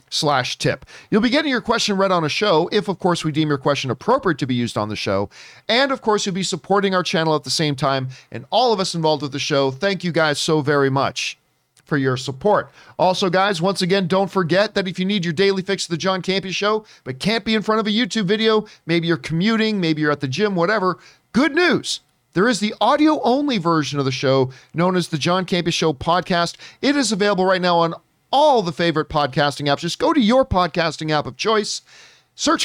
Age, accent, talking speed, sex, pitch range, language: 40-59, American, 235 wpm, male, 150-210 Hz, English